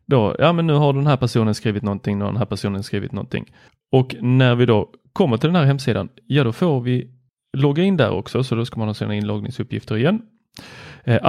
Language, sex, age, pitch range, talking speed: Swedish, male, 30-49, 110-140 Hz, 230 wpm